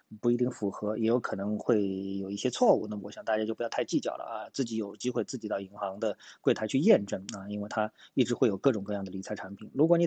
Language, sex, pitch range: Chinese, male, 100-140 Hz